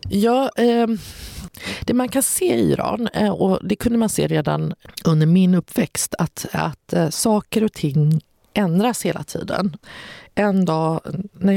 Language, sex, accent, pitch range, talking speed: English, female, Swedish, 160-210 Hz, 140 wpm